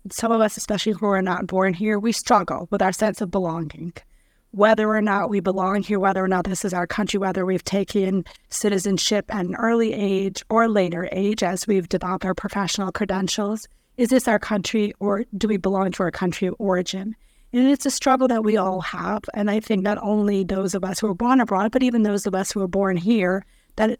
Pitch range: 190-220 Hz